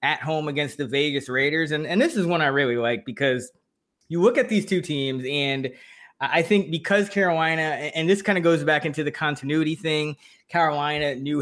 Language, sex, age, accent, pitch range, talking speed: English, male, 20-39, American, 140-175 Hz, 200 wpm